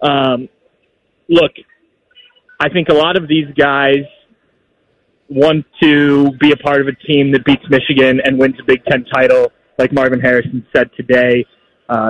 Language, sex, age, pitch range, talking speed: English, male, 20-39, 140-170 Hz, 160 wpm